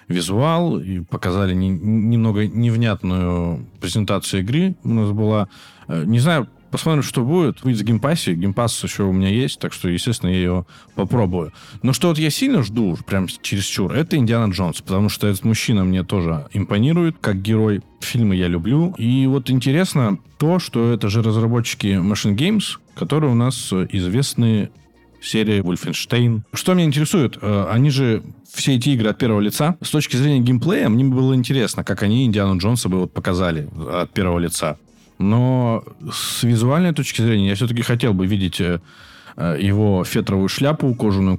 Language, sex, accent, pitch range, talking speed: Russian, male, native, 95-130 Hz, 160 wpm